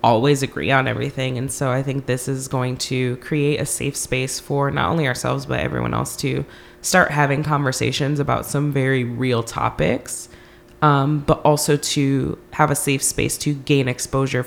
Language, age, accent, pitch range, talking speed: English, 20-39, American, 125-145 Hz, 180 wpm